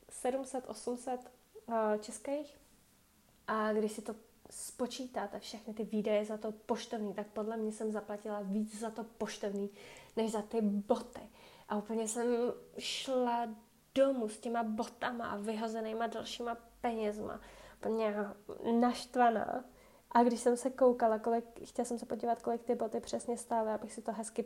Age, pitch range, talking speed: 20-39, 210-235 Hz, 150 wpm